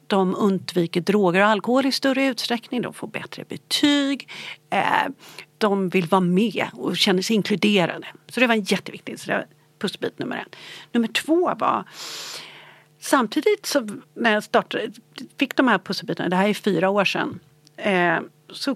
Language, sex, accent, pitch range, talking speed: Swedish, female, native, 185-250 Hz, 165 wpm